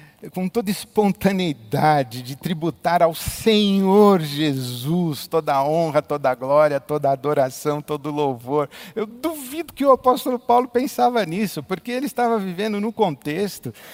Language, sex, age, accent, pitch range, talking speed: Portuguese, male, 50-69, Brazilian, 145-230 Hz, 130 wpm